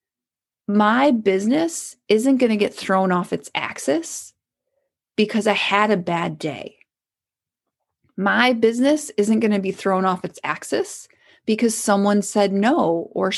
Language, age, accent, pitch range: English, 30-49, American, 195-240 Hz